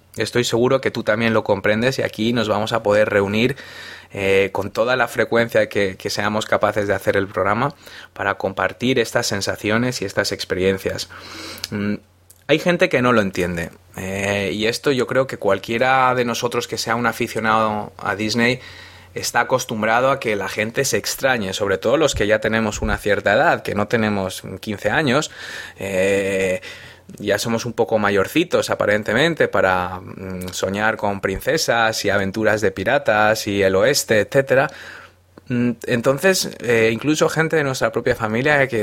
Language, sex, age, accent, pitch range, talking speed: Spanish, male, 20-39, Spanish, 100-125 Hz, 165 wpm